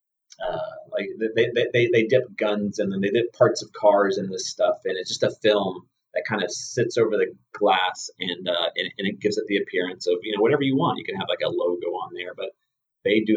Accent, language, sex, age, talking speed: American, English, male, 30-49, 250 wpm